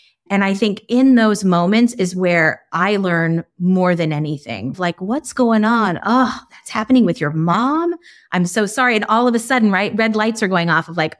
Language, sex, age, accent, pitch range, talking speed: English, female, 30-49, American, 170-220 Hz, 210 wpm